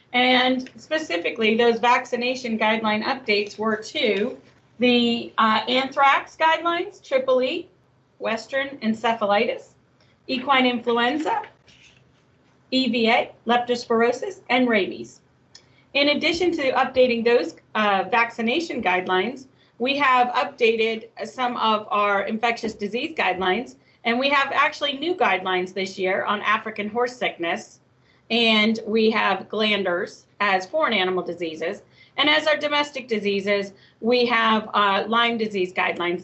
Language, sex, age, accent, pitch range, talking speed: English, female, 40-59, American, 205-260 Hz, 115 wpm